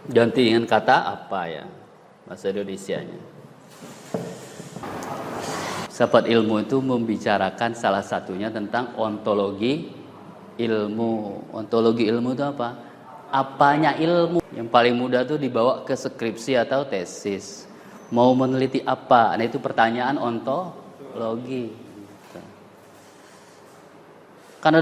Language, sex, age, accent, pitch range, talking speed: Indonesian, male, 20-39, native, 115-170 Hz, 90 wpm